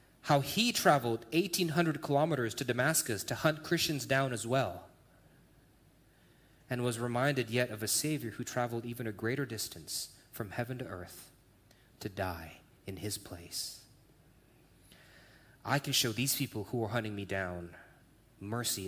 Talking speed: 145 wpm